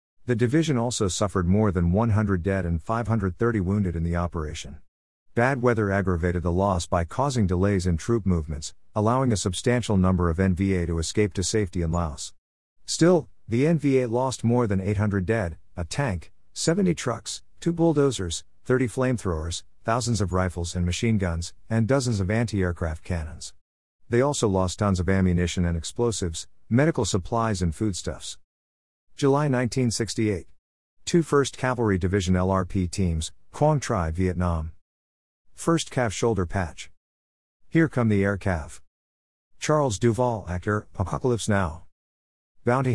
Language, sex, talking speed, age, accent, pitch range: English, male, 140 wpm, 50-69, American, 85-115 Hz